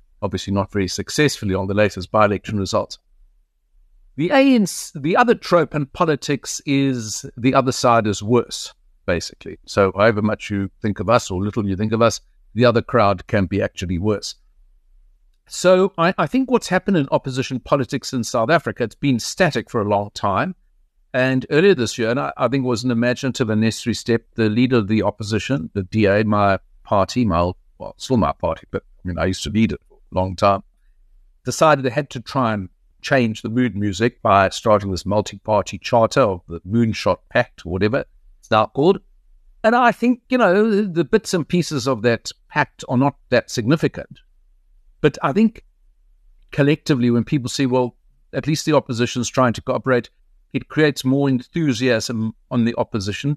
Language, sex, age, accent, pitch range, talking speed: English, male, 50-69, South African, 100-140 Hz, 190 wpm